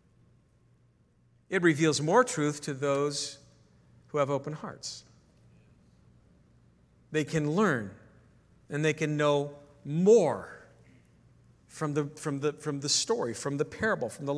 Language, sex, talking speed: English, male, 125 wpm